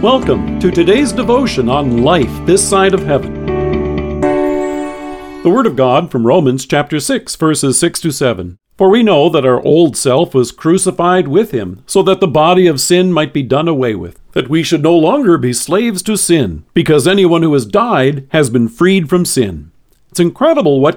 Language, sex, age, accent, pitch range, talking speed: English, male, 50-69, American, 120-170 Hz, 190 wpm